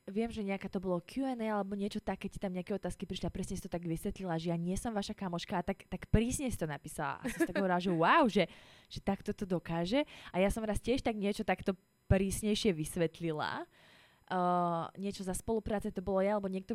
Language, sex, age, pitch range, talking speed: Slovak, female, 20-39, 170-210 Hz, 230 wpm